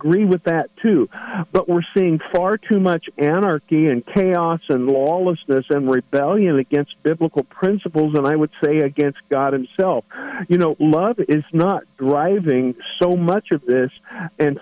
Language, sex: English, male